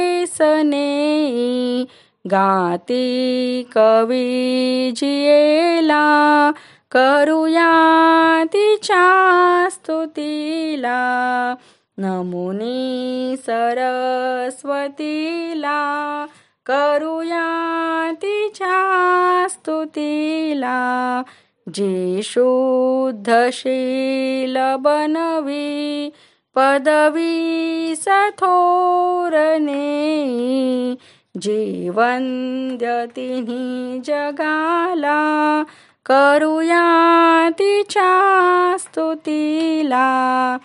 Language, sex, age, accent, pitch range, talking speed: Marathi, female, 20-39, native, 255-325 Hz, 35 wpm